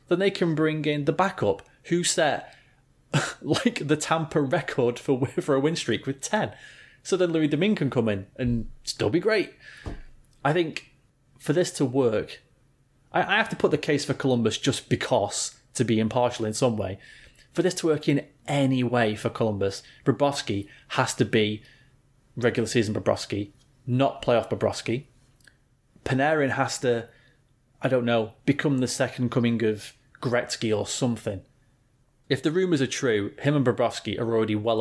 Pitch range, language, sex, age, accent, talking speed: 115-145 Hz, English, male, 30-49, British, 170 wpm